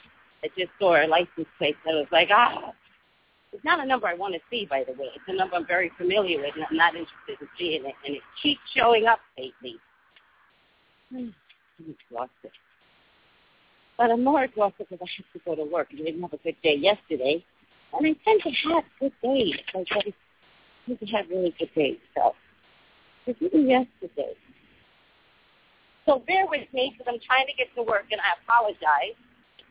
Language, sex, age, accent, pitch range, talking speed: English, female, 50-69, American, 185-295 Hz, 195 wpm